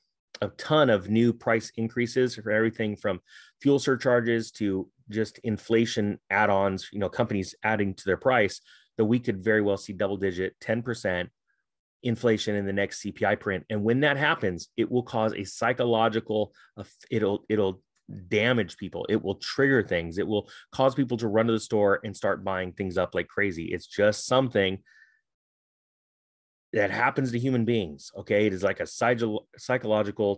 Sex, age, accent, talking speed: male, 30-49, American, 165 wpm